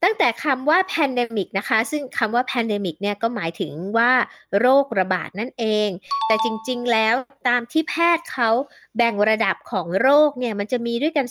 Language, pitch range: Thai, 210-285 Hz